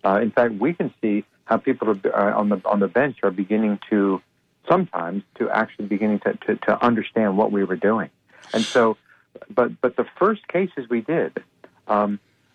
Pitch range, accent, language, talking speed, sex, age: 105-135 Hz, American, English, 190 wpm, male, 60-79